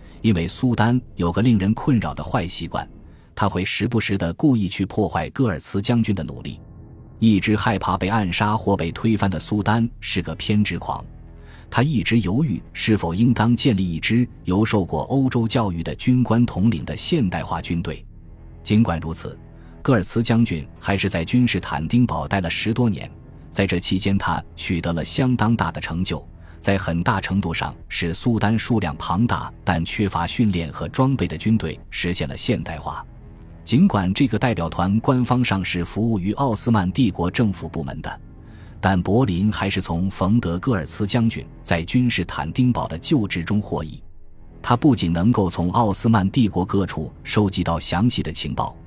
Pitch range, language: 85-115 Hz, Chinese